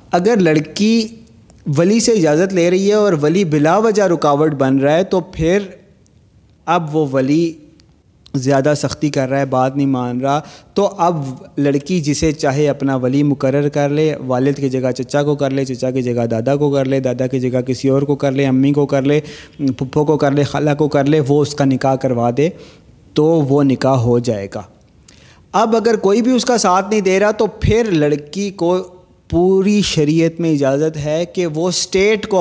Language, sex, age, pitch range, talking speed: Urdu, male, 30-49, 135-180 Hz, 200 wpm